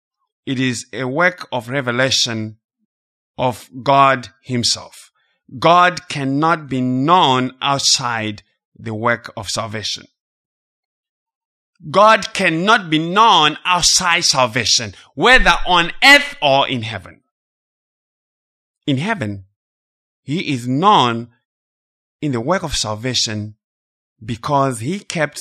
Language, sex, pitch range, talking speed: English, male, 110-175 Hz, 100 wpm